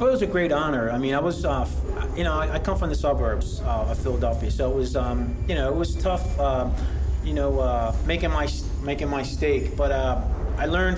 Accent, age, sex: American, 30-49, male